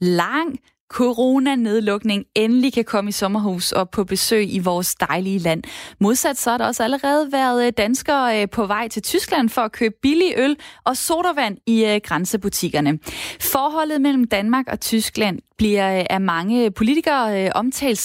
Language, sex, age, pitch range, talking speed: Danish, female, 20-39, 205-260 Hz, 150 wpm